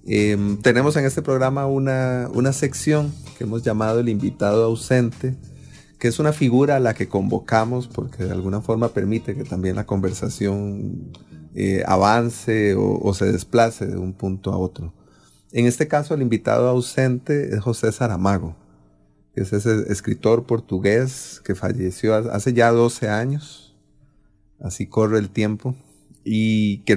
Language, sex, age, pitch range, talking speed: English, male, 30-49, 100-130 Hz, 150 wpm